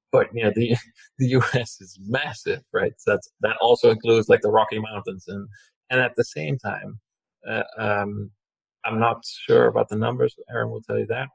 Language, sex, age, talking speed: English, male, 40-59, 195 wpm